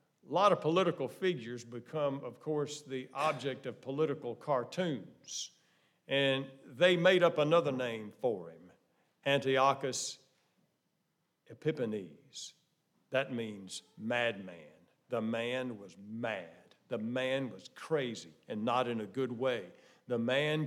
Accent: American